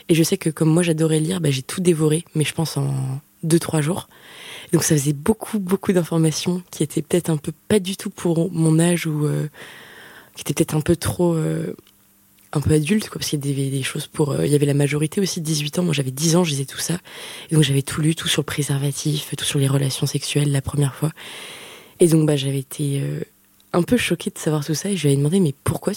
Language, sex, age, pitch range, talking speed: French, female, 20-39, 150-175 Hz, 250 wpm